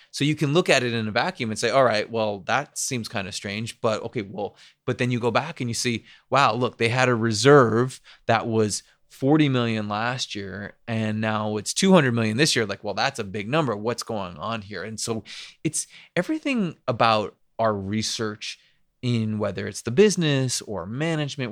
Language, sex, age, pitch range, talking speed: English, male, 20-39, 110-130 Hz, 205 wpm